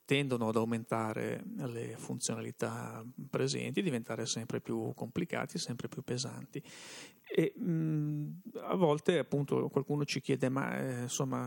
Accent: native